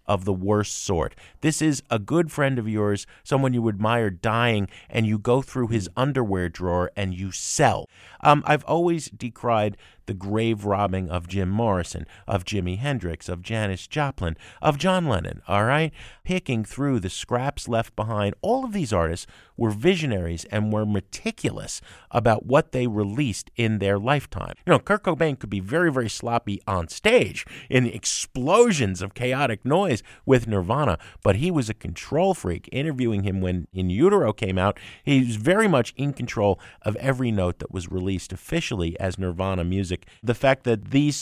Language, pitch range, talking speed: English, 95-130 Hz, 175 wpm